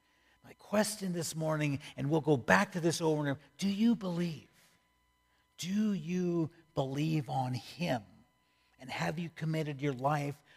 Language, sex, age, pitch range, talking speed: English, male, 50-69, 150-195 Hz, 155 wpm